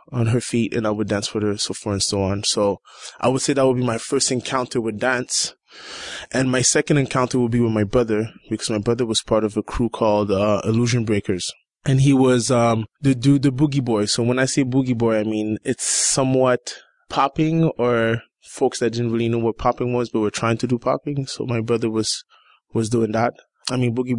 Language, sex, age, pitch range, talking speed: English, male, 20-39, 110-120 Hz, 230 wpm